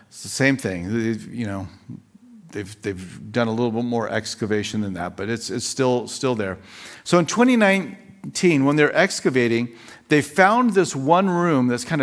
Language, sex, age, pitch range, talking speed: English, male, 50-69, 120-165 Hz, 180 wpm